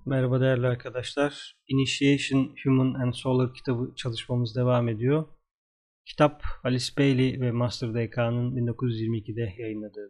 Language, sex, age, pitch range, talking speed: Turkish, male, 30-49, 115-135 Hz, 105 wpm